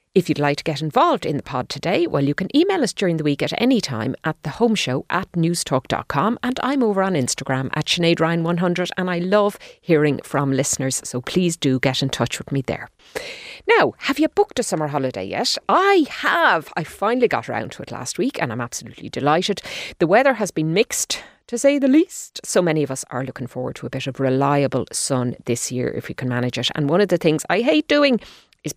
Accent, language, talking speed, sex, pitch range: Irish, English, 225 wpm, female, 135-205 Hz